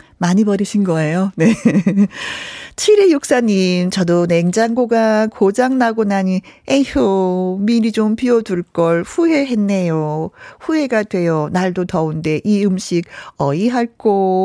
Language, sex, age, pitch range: Korean, female, 40-59, 170-250 Hz